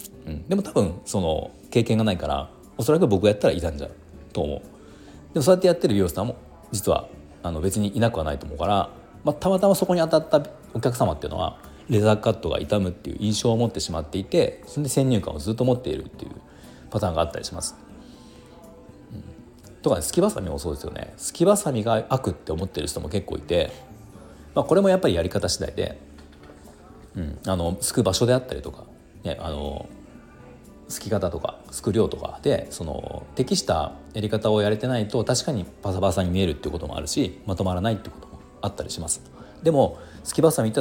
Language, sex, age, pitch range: Japanese, male, 40-59, 80-115 Hz